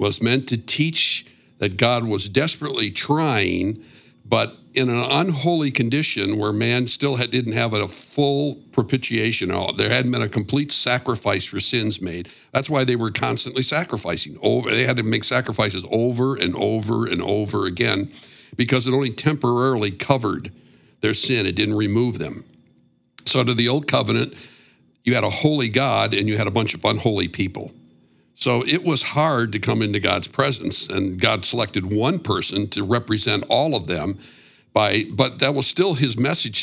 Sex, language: male, English